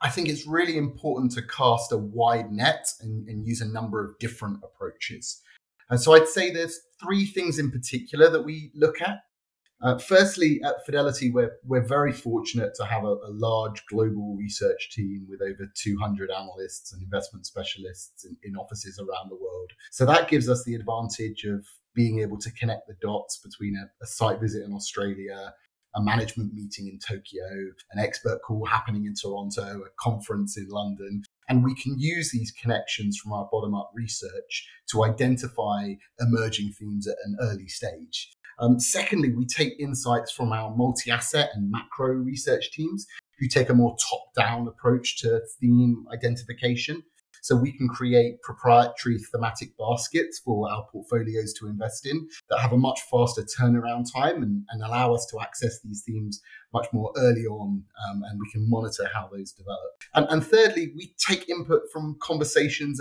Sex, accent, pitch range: male, British, 105-135 Hz